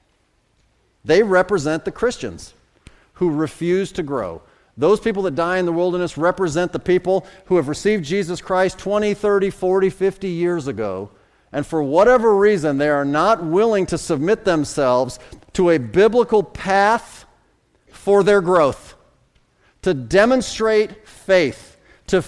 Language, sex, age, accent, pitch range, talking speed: English, male, 50-69, American, 140-205 Hz, 135 wpm